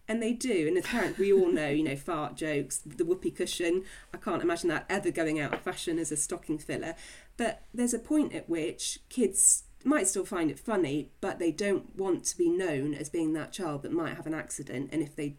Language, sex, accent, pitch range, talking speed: English, female, British, 150-235 Hz, 235 wpm